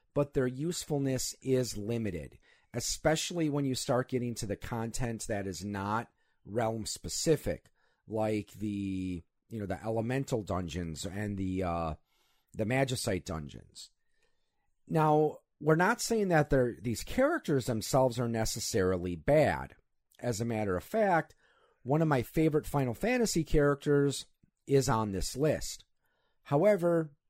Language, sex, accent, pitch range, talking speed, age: English, male, American, 105-150 Hz, 130 wpm, 40-59